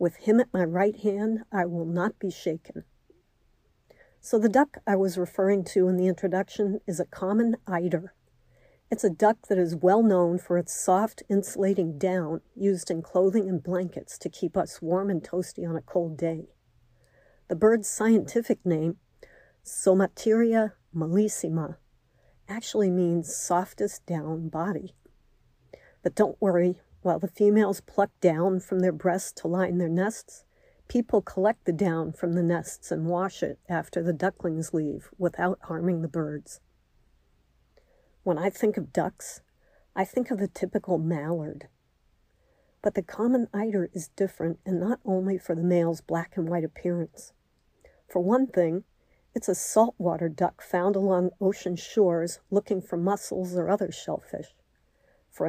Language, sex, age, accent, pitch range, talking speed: English, female, 50-69, American, 175-205 Hz, 150 wpm